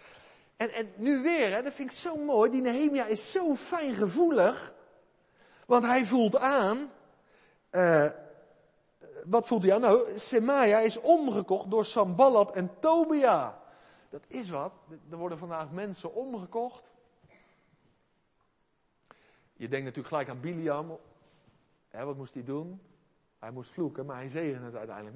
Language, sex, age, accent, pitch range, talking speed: Dutch, male, 50-69, Dutch, 160-255 Hz, 135 wpm